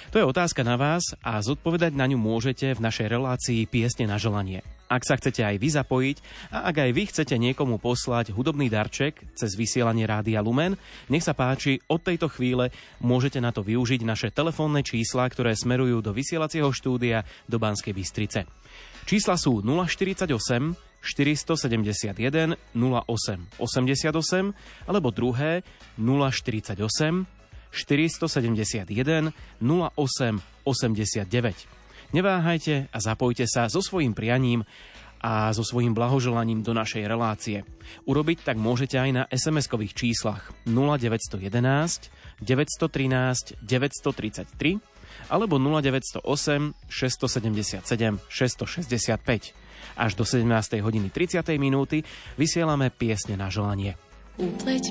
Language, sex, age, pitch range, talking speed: Slovak, male, 30-49, 110-150 Hz, 115 wpm